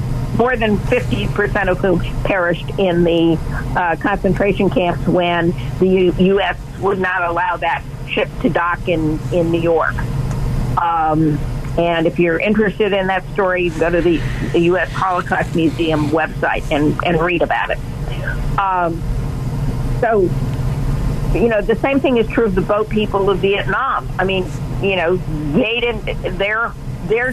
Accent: American